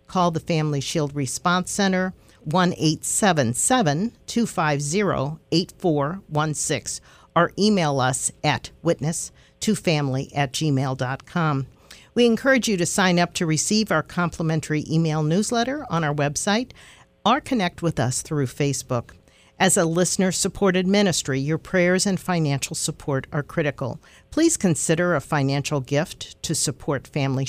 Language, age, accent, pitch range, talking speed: English, 50-69, American, 140-180 Hz, 120 wpm